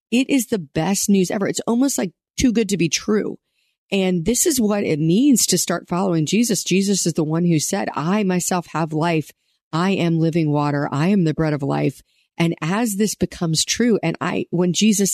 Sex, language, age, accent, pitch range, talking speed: female, English, 40-59, American, 165-205 Hz, 210 wpm